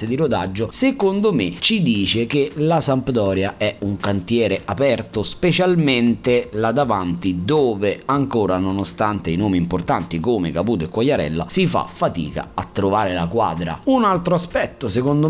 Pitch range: 95-145 Hz